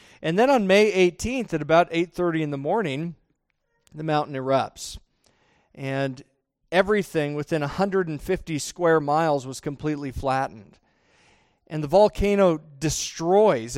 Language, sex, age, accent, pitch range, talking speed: English, male, 40-59, American, 140-185 Hz, 120 wpm